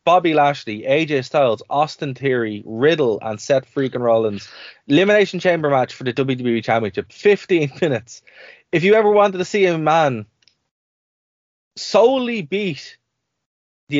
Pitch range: 115-160 Hz